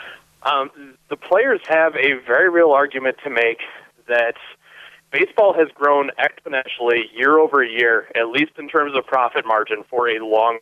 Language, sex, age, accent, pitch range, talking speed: English, male, 30-49, American, 130-170 Hz, 160 wpm